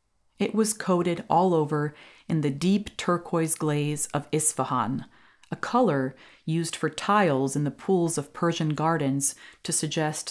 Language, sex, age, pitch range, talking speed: English, female, 30-49, 145-190 Hz, 145 wpm